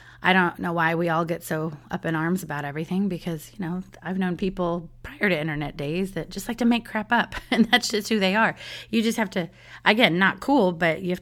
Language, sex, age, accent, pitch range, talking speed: English, female, 30-49, American, 155-200 Hz, 245 wpm